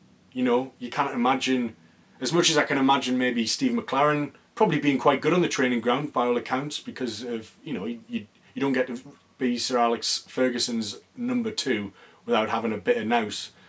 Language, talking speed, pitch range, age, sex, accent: English, 200 wpm, 115-140 Hz, 30-49, male, British